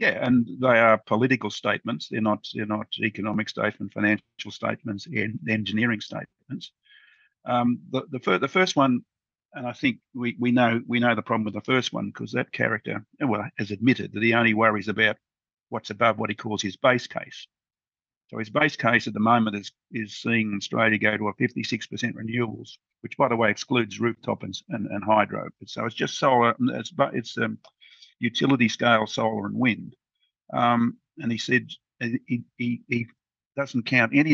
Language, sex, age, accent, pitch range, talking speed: English, male, 50-69, Australian, 105-120 Hz, 190 wpm